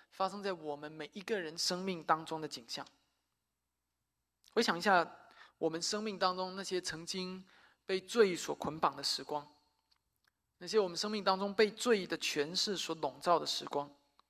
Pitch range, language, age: 175-225 Hz, Chinese, 20-39